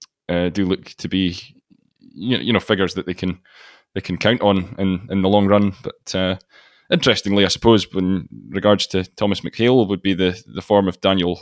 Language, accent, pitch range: English, British, 90-100 Hz